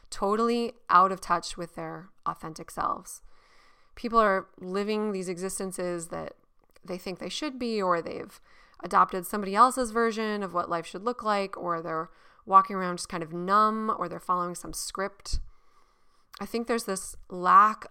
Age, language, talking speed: 20-39, English, 165 wpm